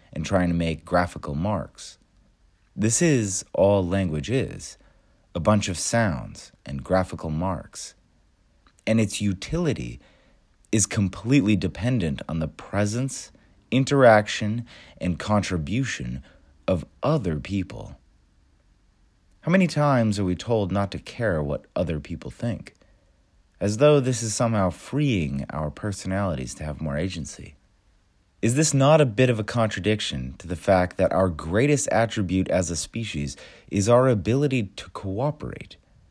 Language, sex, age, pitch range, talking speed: English, male, 30-49, 85-110 Hz, 135 wpm